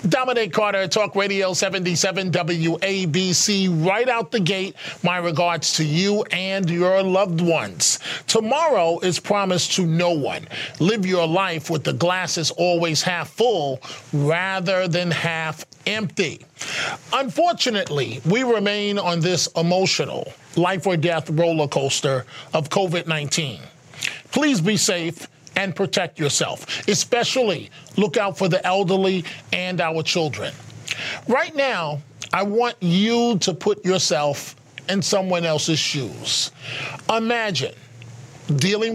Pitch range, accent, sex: 160-200 Hz, American, male